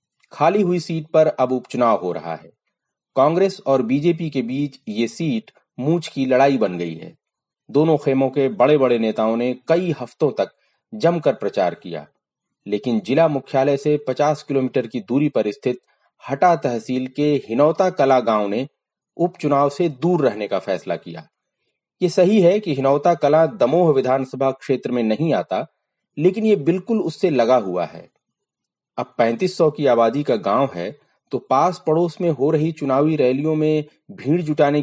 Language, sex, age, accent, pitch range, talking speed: Hindi, male, 30-49, native, 130-165 Hz, 165 wpm